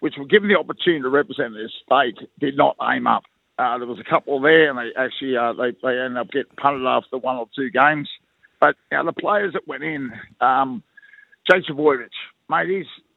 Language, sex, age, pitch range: English, male, 50-69, 140-190 Hz